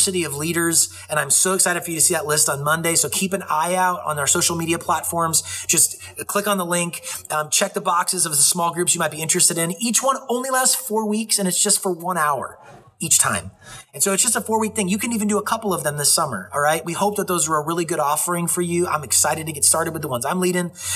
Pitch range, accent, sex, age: 145-190 Hz, American, male, 30-49